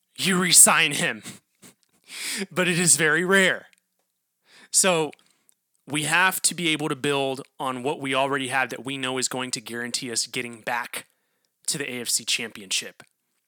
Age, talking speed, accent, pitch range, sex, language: 30-49, 155 wpm, American, 120-175 Hz, male, English